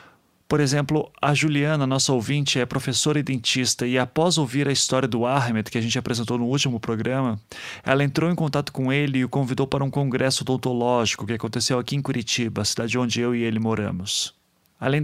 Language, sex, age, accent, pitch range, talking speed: Portuguese, male, 30-49, Brazilian, 125-140 Hz, 200 wpm